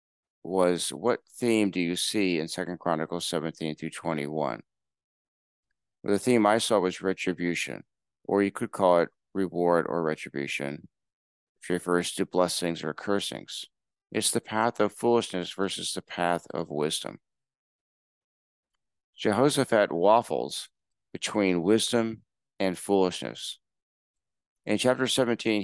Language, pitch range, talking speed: English, 85-100 Hz, 115 wpm